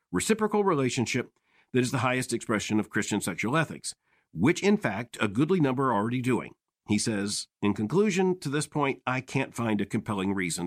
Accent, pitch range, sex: American, 110-170 Hz, male